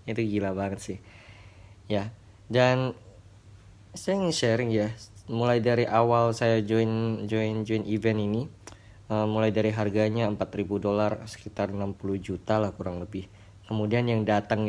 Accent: native